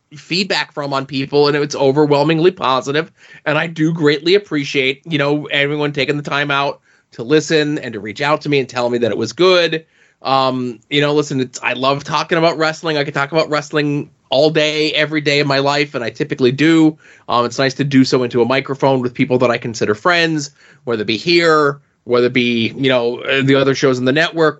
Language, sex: English, male